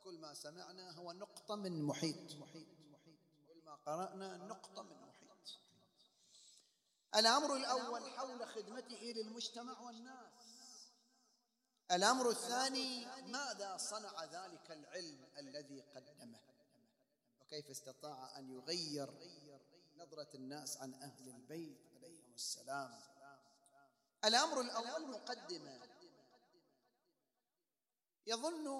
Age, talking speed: 40-59, 90 wpm